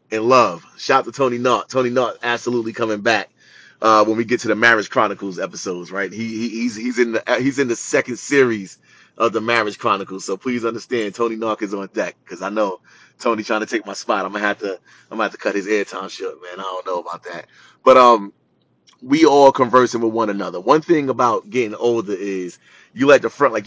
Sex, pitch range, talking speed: male, 105-125 Hz, 230 wpm